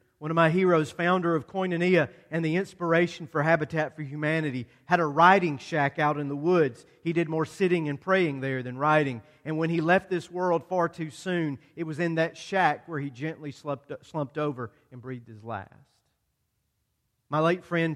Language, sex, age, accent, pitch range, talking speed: English, male, 40-59, American, 145-180 Hz, 195 wpm